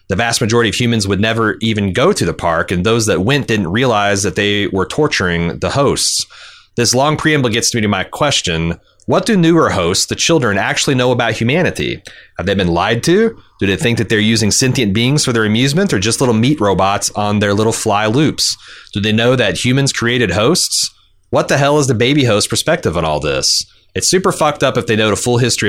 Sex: male